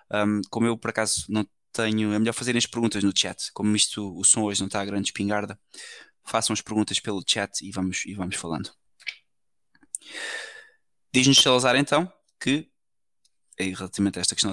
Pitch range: 100-120 Hz